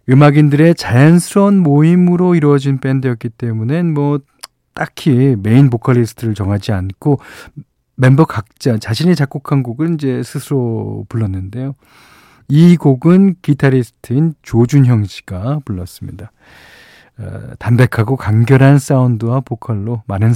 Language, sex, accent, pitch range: Korean, male, native, 110-150 Hz